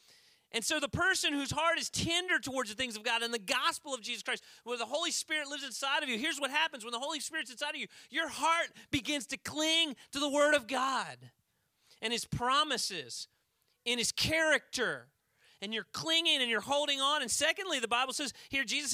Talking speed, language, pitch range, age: 210 wpm, English, 225-300 Hz, 30-49